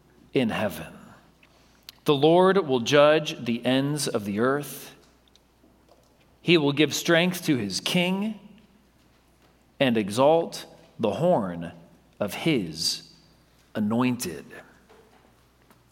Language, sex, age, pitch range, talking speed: English, male, 40-59, 150-205 Hz, 95 wpm